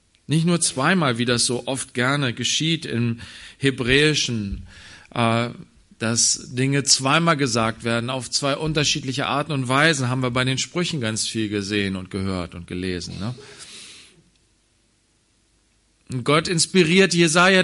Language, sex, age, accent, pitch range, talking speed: German, male, 40-59, German, 110-175 Hz, 130 wpm